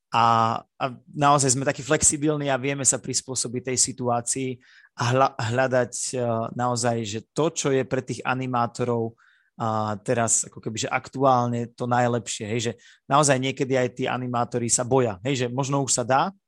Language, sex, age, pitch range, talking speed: Slovak, male, 30-49, 115-130 Hz, 160 wpm